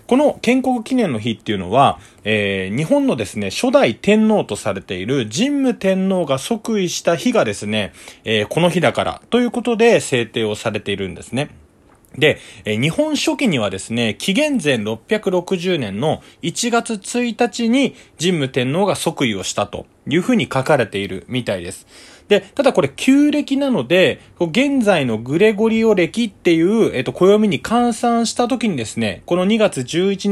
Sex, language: male, Japanese